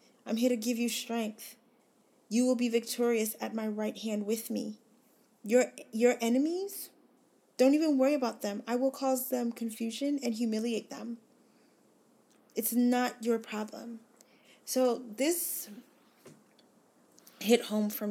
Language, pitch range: English, 205-245 Hz